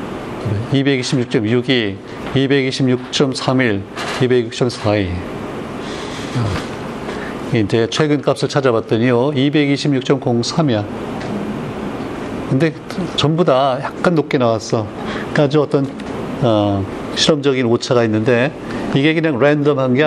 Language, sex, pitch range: Korean, male, 115-145 Hz